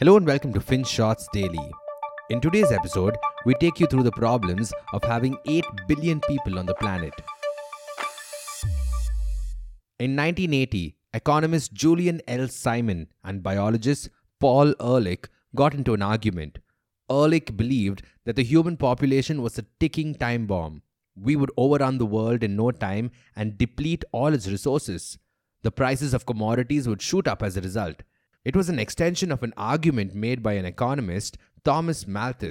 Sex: male